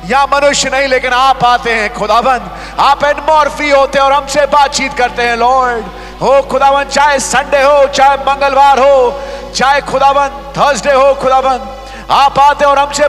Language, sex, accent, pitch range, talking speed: English, male, Indian, 250-285 Hz, 165 wpm